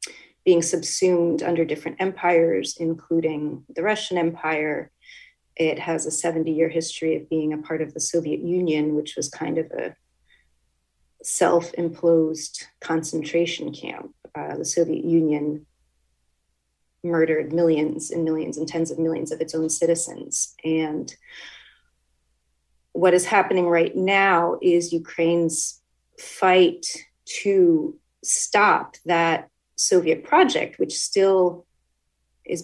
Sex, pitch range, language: female, 155-170 Hz, English